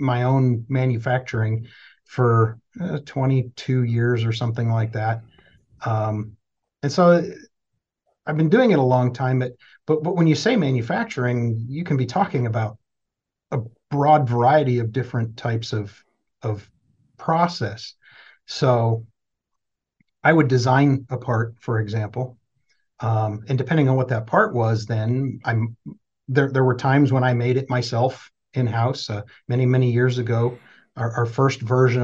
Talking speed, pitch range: 145 wpm, 115-130 Hz